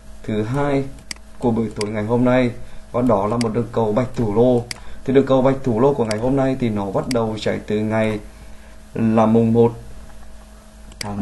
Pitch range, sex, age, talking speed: 105-130 Hz, male, 20-39, 205 wpm